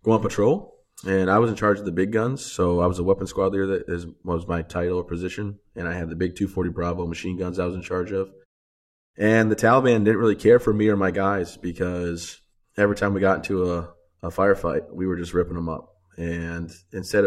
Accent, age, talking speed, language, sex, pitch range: American, 20-39, 235 wpm, English, male, 85-95 Hz